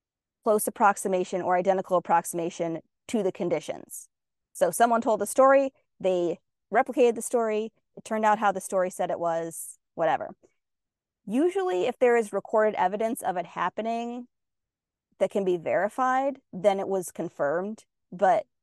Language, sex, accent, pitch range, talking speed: English, female, American, 180-235 Hz, 145 wpm